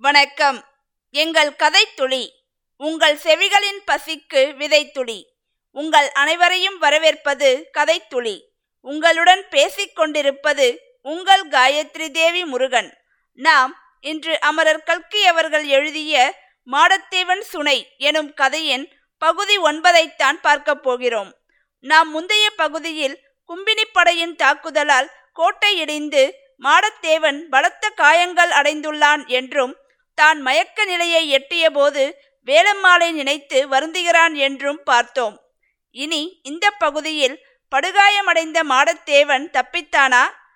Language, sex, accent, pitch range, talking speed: Tamil, female, native, 275-345 Hz, 90 wpm